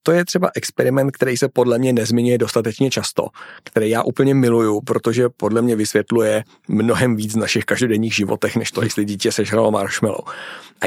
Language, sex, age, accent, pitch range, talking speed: Czech, male, 40-59, native, 110-130 Hz, 175 wpm